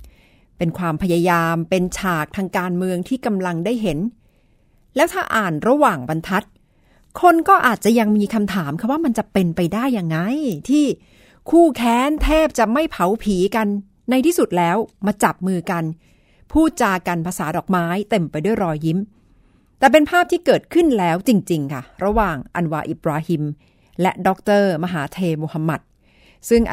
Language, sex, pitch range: Thai, female, 180-240 Hz